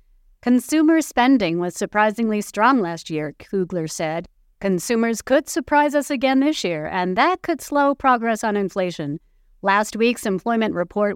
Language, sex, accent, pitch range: English, female, American, 170-235 Hz